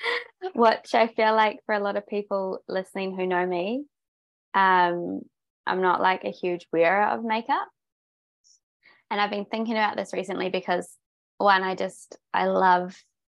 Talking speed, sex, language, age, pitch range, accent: 160 wpm, female, English, 20-39, 180-230 Hz, Australian